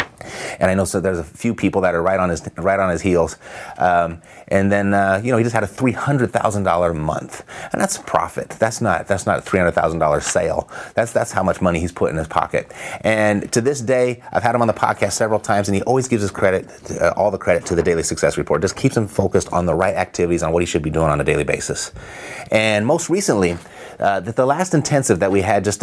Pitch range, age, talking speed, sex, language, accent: 90-110 Hz, 30-49, 250 wpm, male, English, American